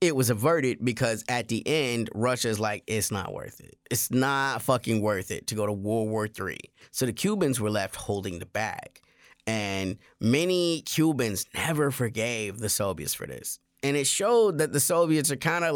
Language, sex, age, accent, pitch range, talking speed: English, male, 20-39, American, 115-165 Hz, 190 wpm